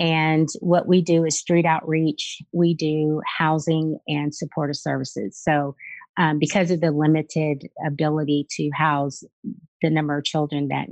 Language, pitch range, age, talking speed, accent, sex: English, 150-170 Hz, 30-49, 150 wpm, American, female